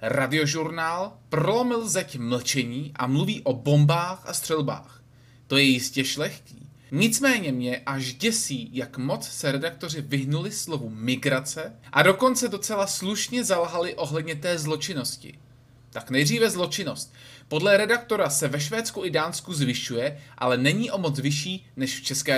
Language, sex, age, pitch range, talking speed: Czech, male, 20-39, 130-185 Hz, 140 wpm